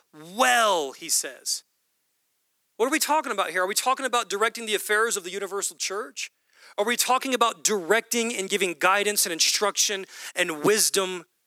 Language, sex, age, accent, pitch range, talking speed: English, male, 40-59, American, 180-250 Hz, 165 wpm